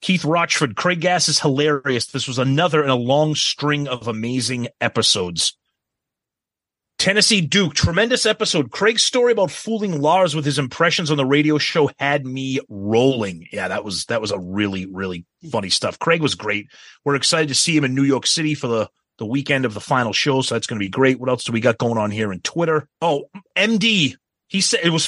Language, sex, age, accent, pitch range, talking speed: English, male, 30-49, American, 130-175 Hz, 210 wpm